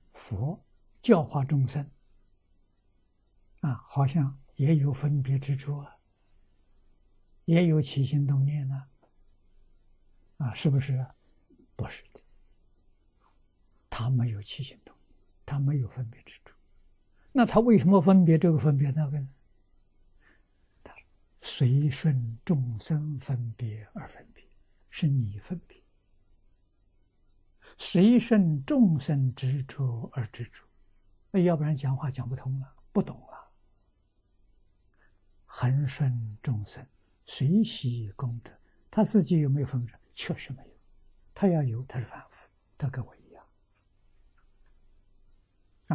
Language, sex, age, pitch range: Chinese, male, 60-79, 100-145 Hz